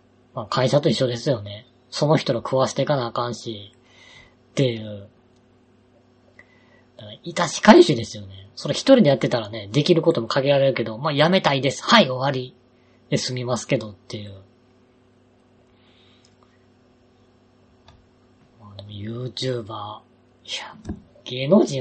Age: 20-39